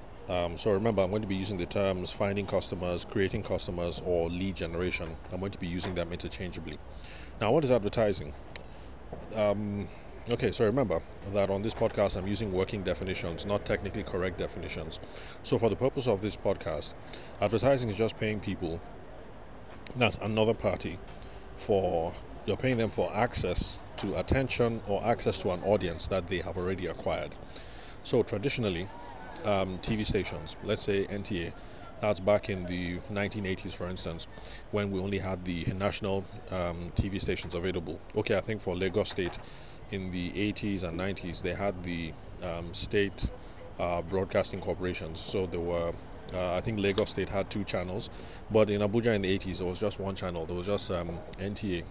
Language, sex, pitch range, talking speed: English, male, 90-105 Hz, 170 wpm